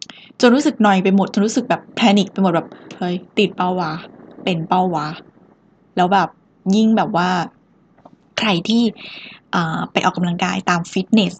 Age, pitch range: 10-29, 180-210 Hz